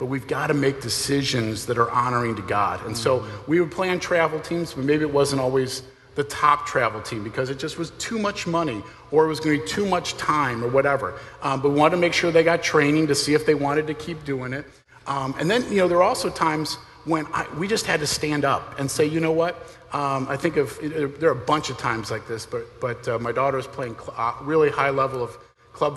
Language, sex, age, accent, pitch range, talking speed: English, male, 50-69, American, 125-155 Hz, 265 wpm